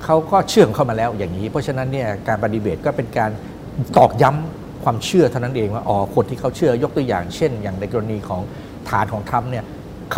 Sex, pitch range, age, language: male, 110-145 Hz, 60-79, Thai